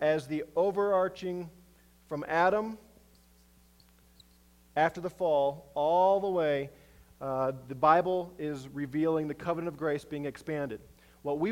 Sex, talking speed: male, 125 wpm